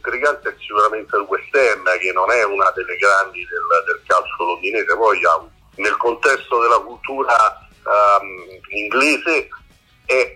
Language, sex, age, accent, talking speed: Italian, male, 50-69, native, 140 wpm